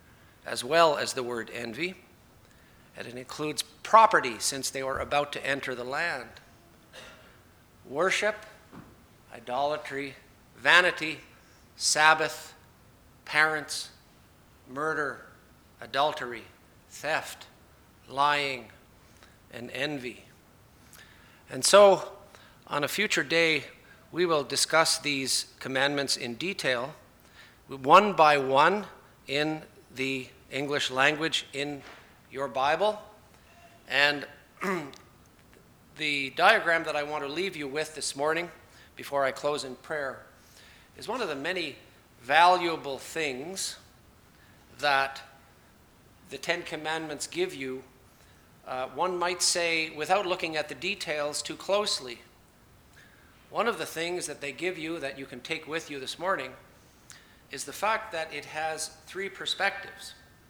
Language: English